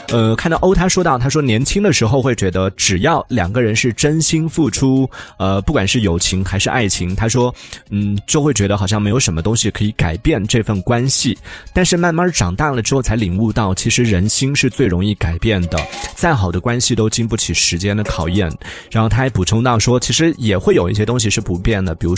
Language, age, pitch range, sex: Chinese, 20-39, 100-135 Hz, male